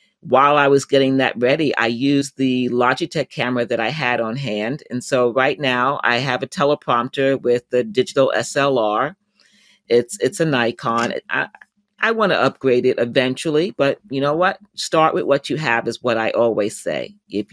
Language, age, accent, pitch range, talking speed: English, 40-59, American, 125-160 Hz, 185 wpm